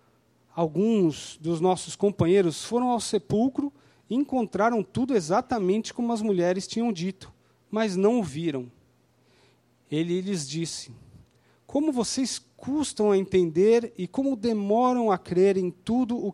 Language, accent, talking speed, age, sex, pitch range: Portuguese, Brazilian, 130 wpm, 40-59, male, 165-230 Hz